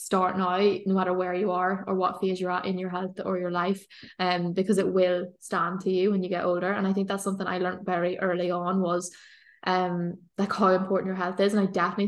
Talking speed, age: 255 wpm, 10-29